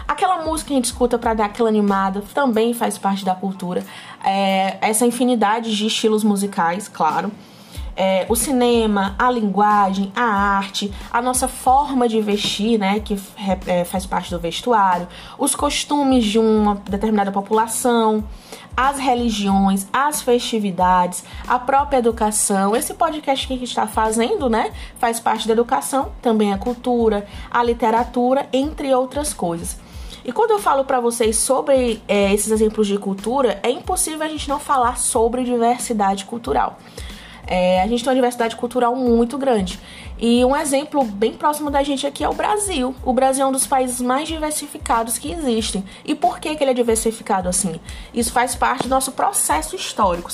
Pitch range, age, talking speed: 205-265 Hz, 20-39, 165 wpm